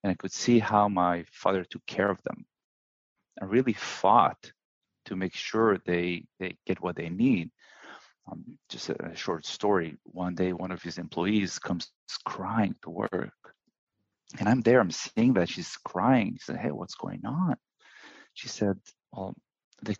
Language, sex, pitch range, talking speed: English, male, 90-115 Hz, 170 wpm